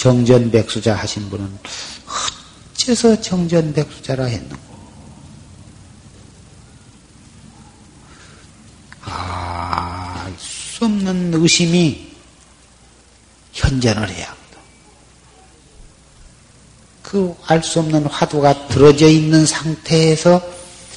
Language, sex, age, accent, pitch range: Korean, male, 40-59, native, 100-160 Hz